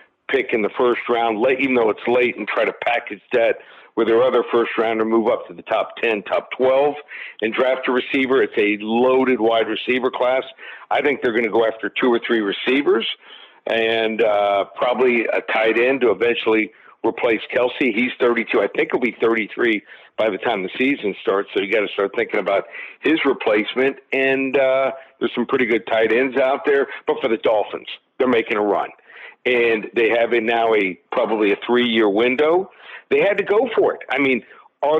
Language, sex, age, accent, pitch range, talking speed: English, male, 50-69, American, 115-145 Hz, 200 wpm